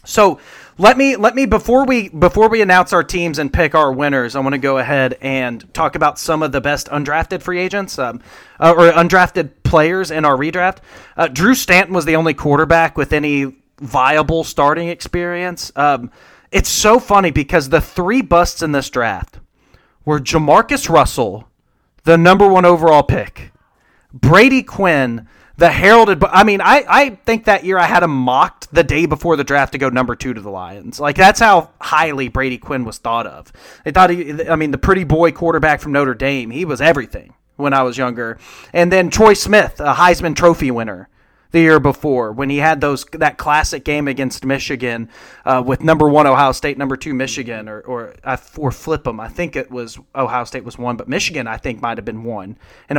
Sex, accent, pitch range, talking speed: male, American, 135-175 Hz, 200 wpm